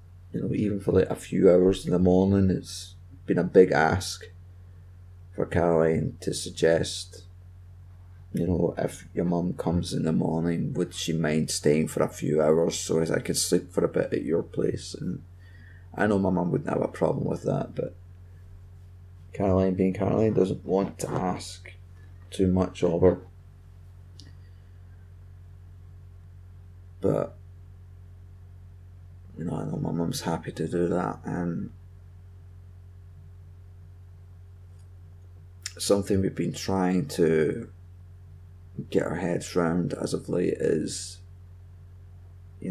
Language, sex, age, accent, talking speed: English, male, 30-49, British, 135 wpm